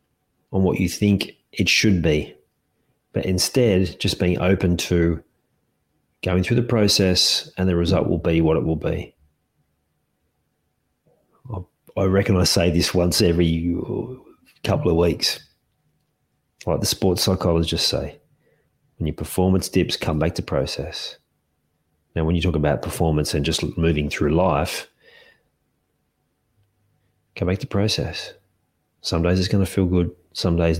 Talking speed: 140 wpm